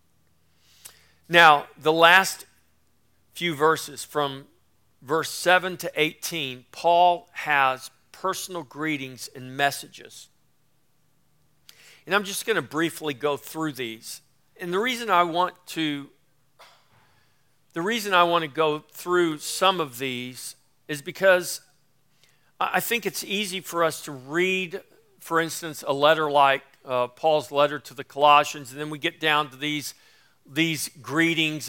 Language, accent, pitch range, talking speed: English, American, 135-170 Hz, 135 wpm